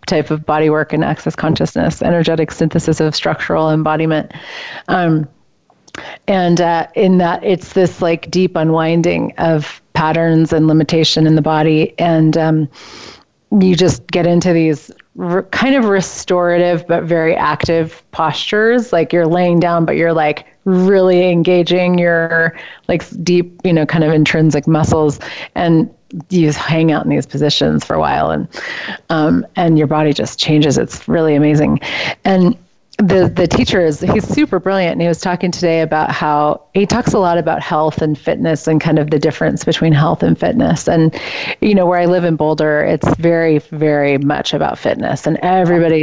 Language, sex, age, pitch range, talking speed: English, female, 30-49, 155-175 Hz, 170 wpm